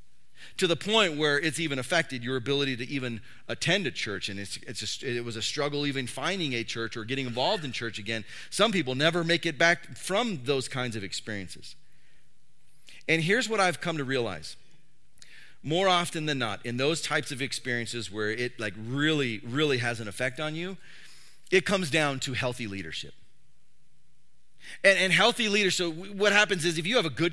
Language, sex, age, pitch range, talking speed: English, male, 40-59, 130-190 Hz, 195 wpm